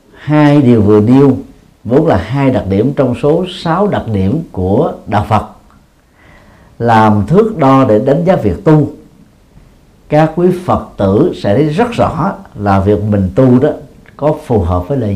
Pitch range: 95-125 Hz